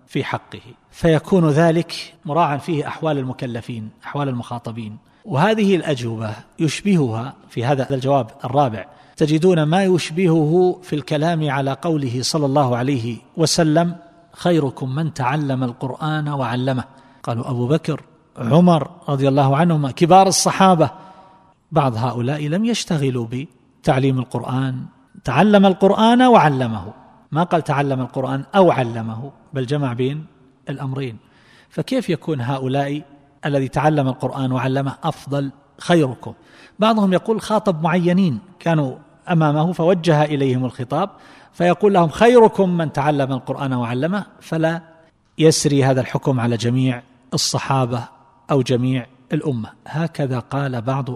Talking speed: 115 wpm